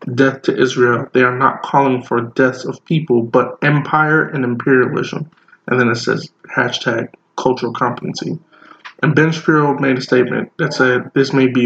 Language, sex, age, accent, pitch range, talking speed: English, male, 20-39, American, 130-155 Hz, 170 wpm